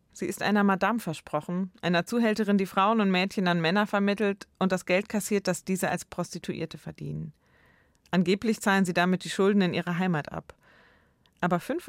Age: 30-49